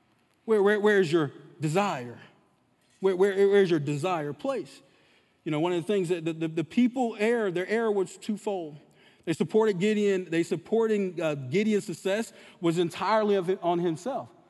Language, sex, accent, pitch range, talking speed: English, male, American, 185-285 Hz, 180 wpm